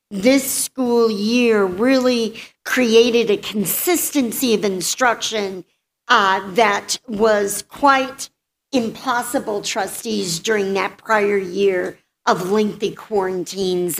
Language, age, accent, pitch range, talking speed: English, 50-69, American, 195-250 Hz, 95 wpm